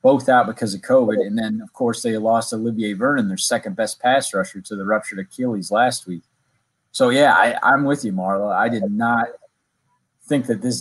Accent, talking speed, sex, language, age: American, 195 wpm, male, English, 30-49